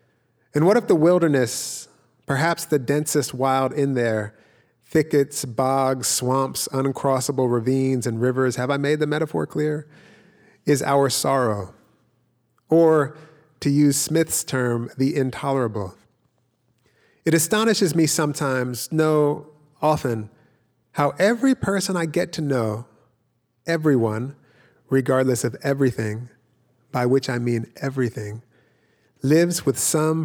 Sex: male